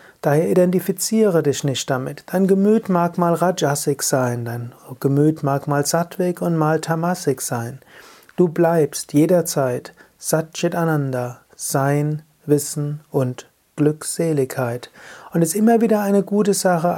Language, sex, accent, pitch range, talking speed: German, male, German, 140-170 Hz, 125 wpm